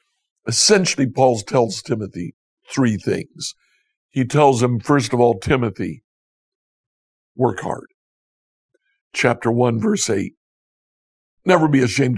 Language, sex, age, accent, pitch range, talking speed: English, male, 60-79, American, 120-150 Hz, 110 wpm